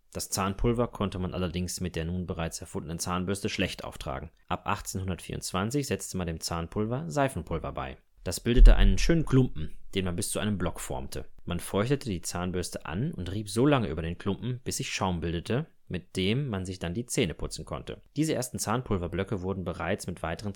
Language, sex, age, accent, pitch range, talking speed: German, male, 30-49, German, 90-115 Hz, 190 wpm